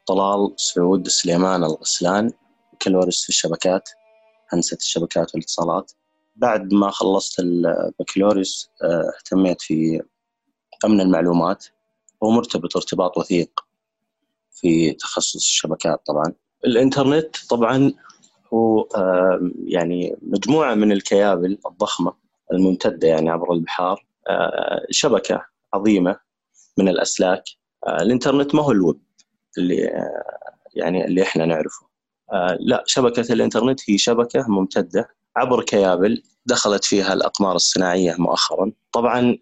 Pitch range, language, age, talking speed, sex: 90-120 Hz, Arabic, 30-49, 105 wpm, male